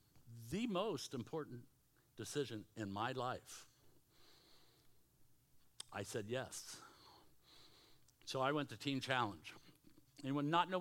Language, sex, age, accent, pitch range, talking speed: English, male, 60-79, American, 135-175 Hz, 105 wpm